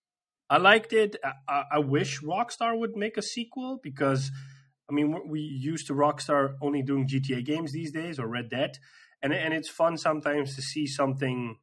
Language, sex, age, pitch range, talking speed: English, male, 20-39, 130-145 Hz, 180 wpm